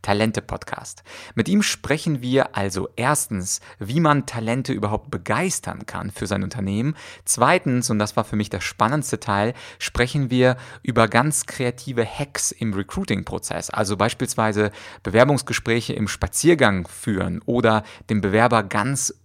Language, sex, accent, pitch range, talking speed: German, male, German, 105-130 Hz, 135 wpm